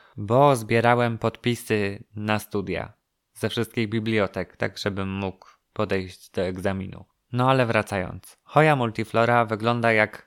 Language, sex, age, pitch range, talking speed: Polish, male, 20-39, 105-120 Hz, 125 wpm